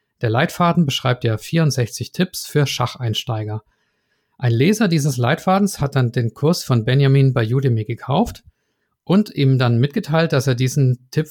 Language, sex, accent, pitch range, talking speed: German, male, German, 115-145 Hz, 155 wpm